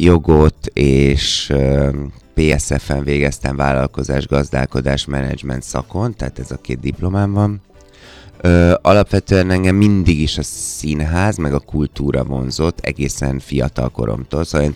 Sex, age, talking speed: male, 30-49, 110 wpm